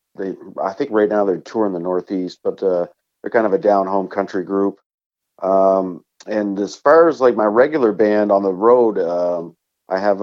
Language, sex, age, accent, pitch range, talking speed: English, male, 40-59, American, 90-115 Hz, 200 wpm